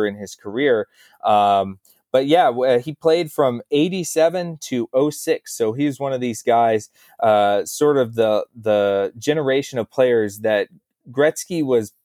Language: English